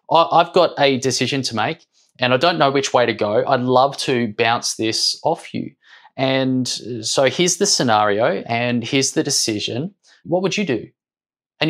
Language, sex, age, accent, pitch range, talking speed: English, male, 20-39, Australian, 125-150 Hz, 180 wpm